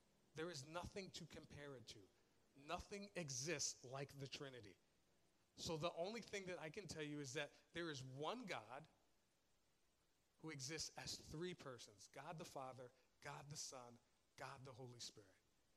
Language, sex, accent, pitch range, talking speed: English, male, American, 140-175 Hz, 160 wpm